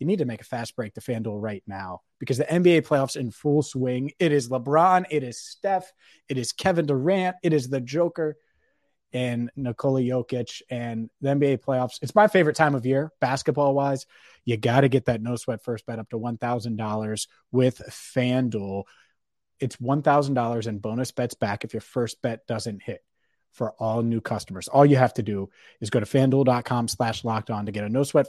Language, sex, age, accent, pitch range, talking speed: English, male, 30-49, American, 115-145 Hz, 195 wpm